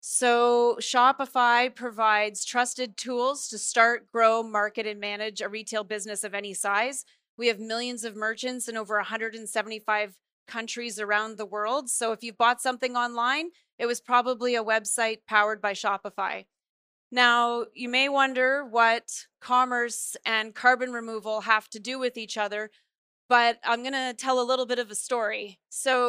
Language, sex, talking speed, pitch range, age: English, female, 160 wpm, 220-250 Hz, 30-49